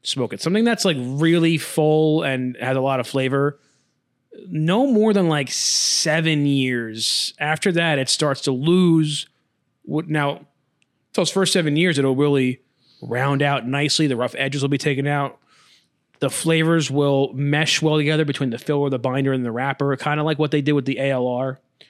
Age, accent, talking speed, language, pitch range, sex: 20-39, American, 180 wpm, English, 130-155 Hz, male